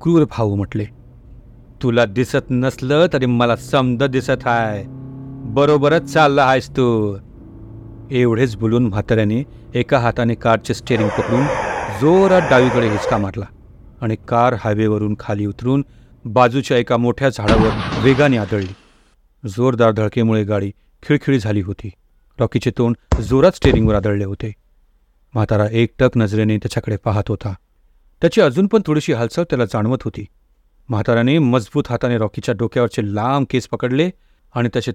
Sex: male